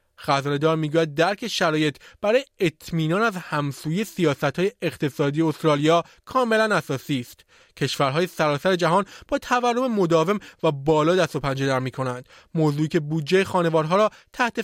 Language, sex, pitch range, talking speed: Persian, male, 160-205 Hz, 135 wpm